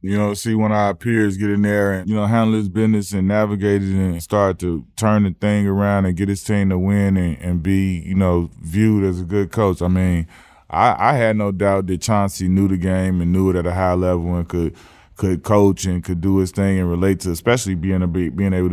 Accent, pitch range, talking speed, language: American, 90-100 Hz, 245 wpm, English